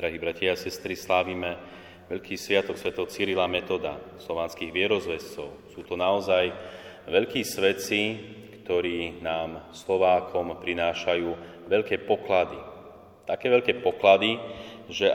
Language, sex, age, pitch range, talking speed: Slovak, male, 30-49, 90-100 Hz, 105 wpm